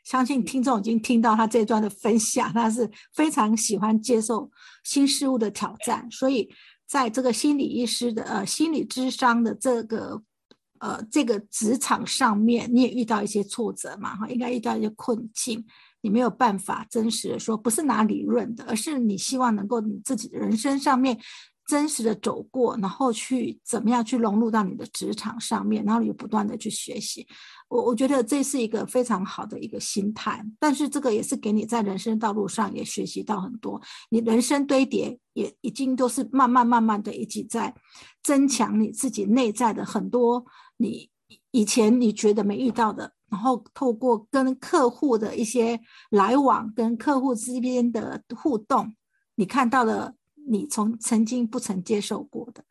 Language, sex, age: English, female, 50-69